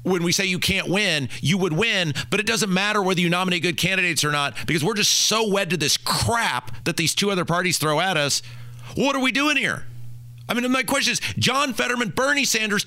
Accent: American